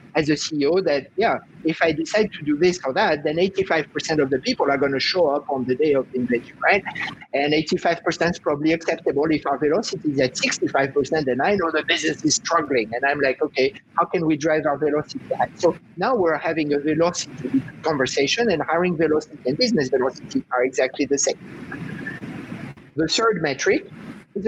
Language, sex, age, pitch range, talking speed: English, male, 50-69, 145-185 Hz, 195 wpm